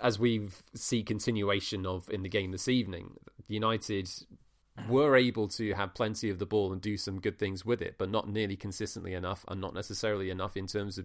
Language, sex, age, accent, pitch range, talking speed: English, male, 30-49, British, 95-110 Hz, 205 wpm